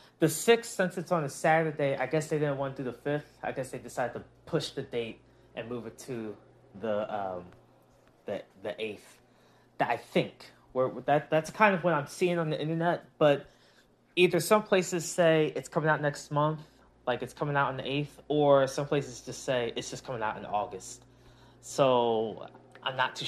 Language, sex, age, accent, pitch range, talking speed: English, male, 20-39, American, 125-165 Hz, 205 wpm